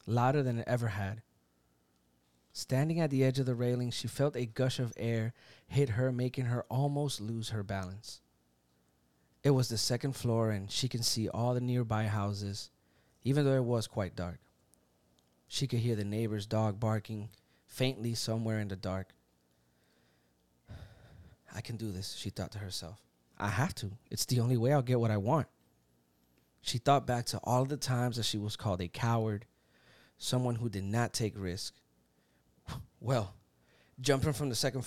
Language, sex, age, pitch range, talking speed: English, male, 30-49, 85-125 Hz, 175 wpm